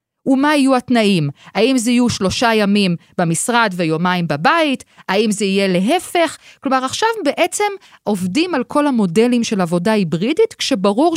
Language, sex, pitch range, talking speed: Hebrew, female, 175-230 Hz, 140 wpm